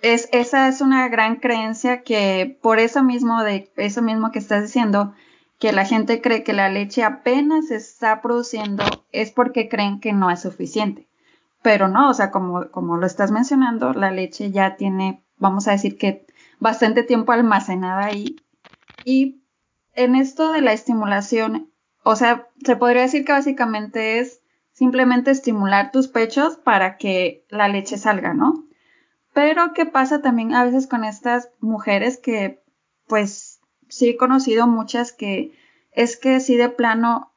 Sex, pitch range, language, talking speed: female, 200-250 Hz, Spanish, 160 wpm